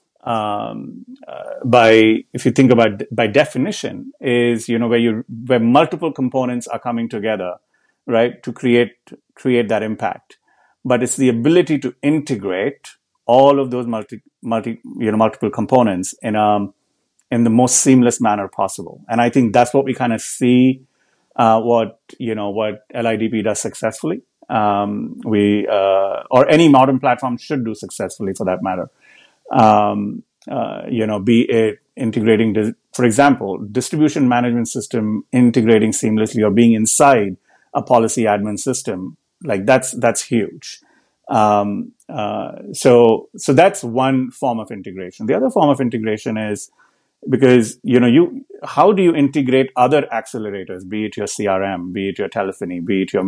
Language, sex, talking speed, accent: English, male, 160 wpm, Indian